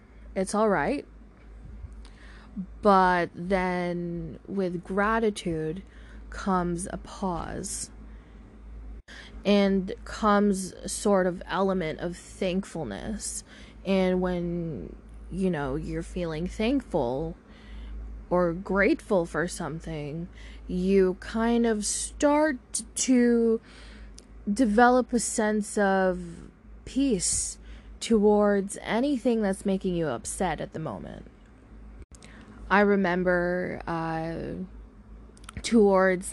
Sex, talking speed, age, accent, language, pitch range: female, 85 wpm, 20-39, American, English, 175-215 Hz